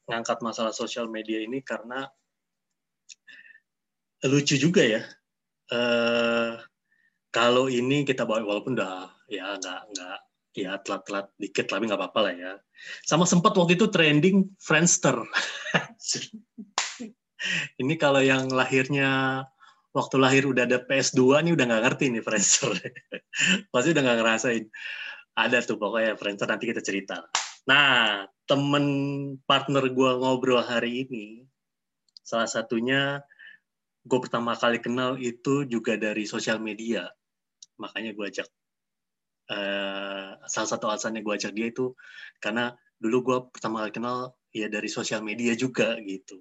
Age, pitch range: 20-39, 115-140 Hz